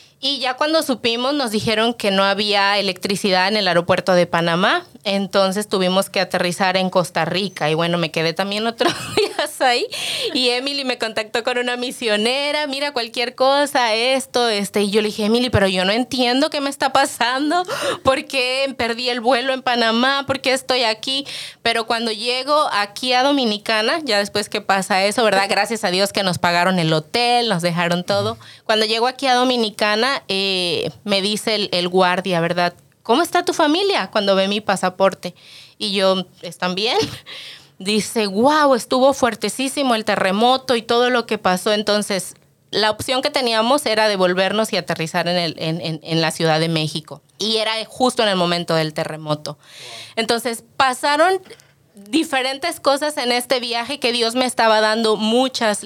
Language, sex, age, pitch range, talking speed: English, female, 20-39, 190-250 Hz, 175 wpm